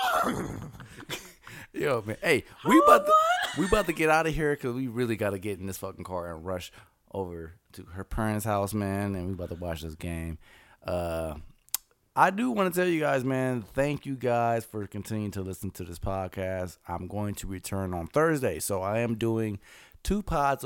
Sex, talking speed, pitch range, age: male, 200 wpm, 90-115 Hz, 30-49